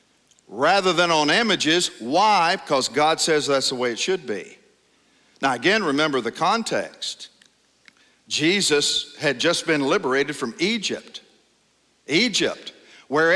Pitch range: 150-200 Hz